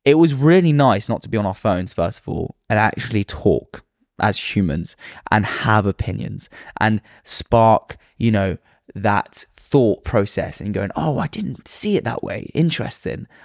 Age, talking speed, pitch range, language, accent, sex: 20-39, 170 wpm, 100-125 Hz, English, British, male